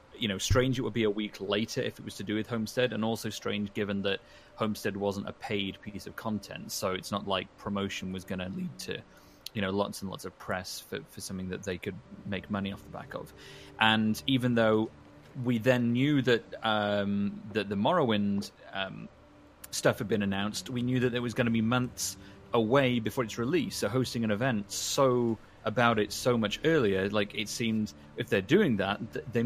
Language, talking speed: English, 210 wpm